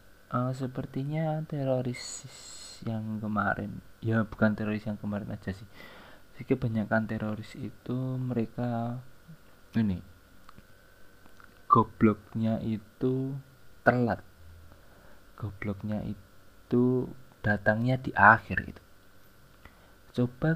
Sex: male